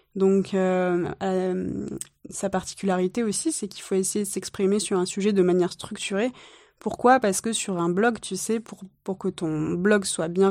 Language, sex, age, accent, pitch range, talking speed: French, female, 20-39, French, 185-230 Hz, 190 wpm